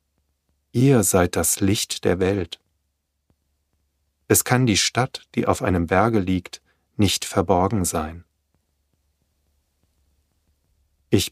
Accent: German